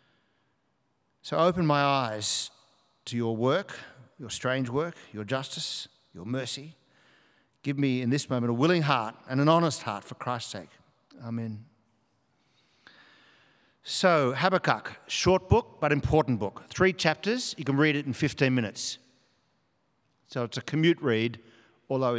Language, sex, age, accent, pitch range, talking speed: English, male, 50-69, Australian, 120-155 Hz, 140 wpm